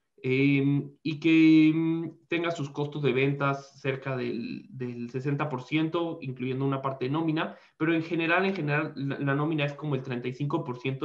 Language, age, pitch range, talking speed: Spanish, 20-39, 130-165 Hz, 165 wpm